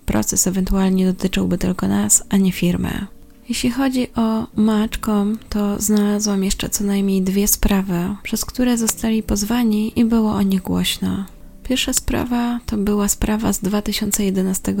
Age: 20-39